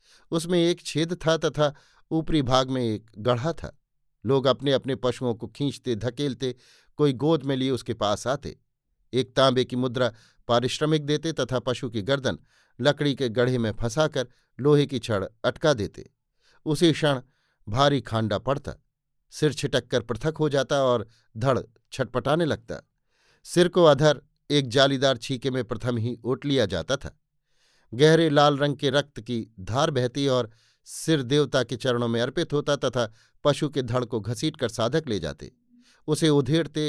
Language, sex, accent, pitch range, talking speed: Hindi, male, native, 120-145 Hz, 160 wpm